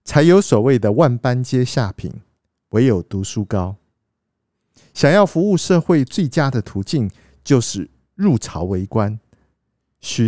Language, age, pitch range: Chinese, 50-69, 105-150 Hz